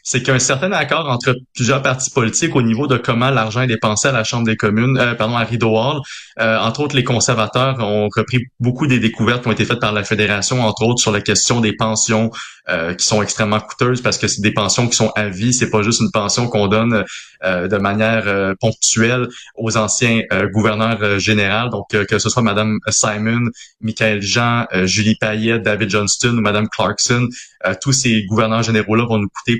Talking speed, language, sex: 215 wpm, French, male